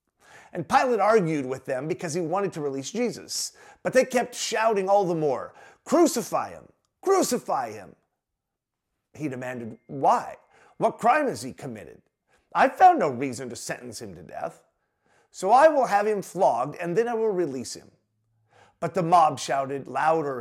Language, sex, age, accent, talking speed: English, male, 40-59, American, 165 wpm